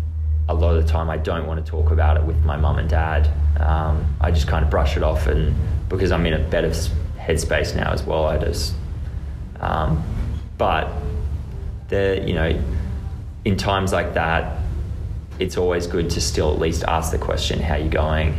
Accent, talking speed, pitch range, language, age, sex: Australian, 195 wpm, 80-90 Hz, English, 20-39, male